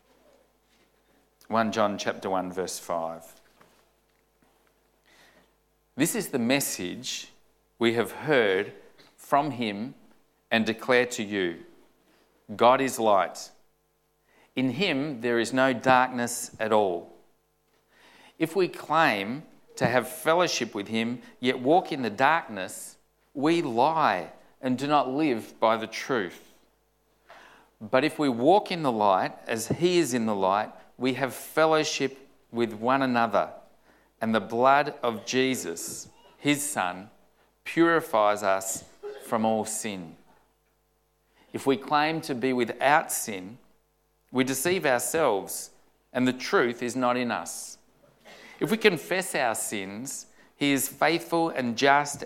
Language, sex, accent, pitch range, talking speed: English, male, Australian, 115-145 Hz, 125 wpm